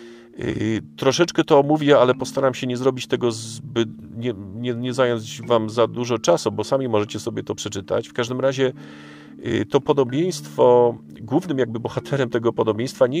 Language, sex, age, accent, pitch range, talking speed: Polish, male, 40-59, native, 110-135 Hz, 160 wpm